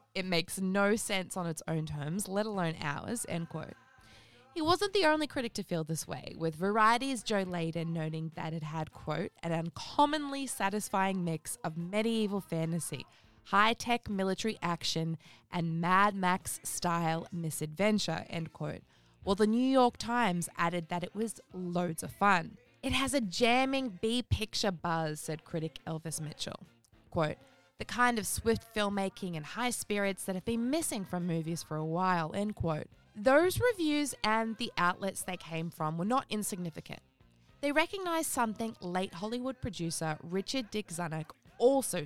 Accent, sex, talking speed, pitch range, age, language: Australian, female, 160 wpm, 165-230 Hz, 20-39, English